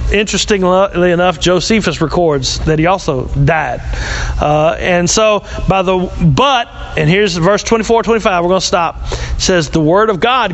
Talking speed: 160 wpm